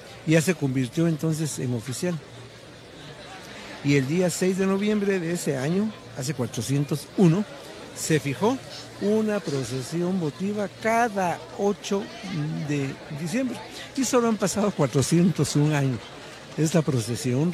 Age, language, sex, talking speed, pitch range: 50-69, Spanish, male, 120 wpm, 135-185 Hz